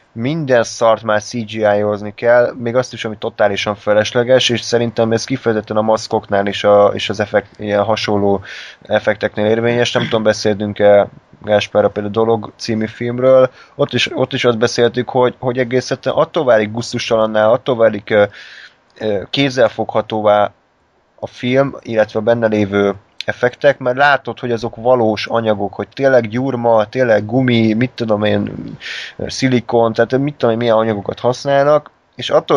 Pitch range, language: 105-125 Hz, Hungarian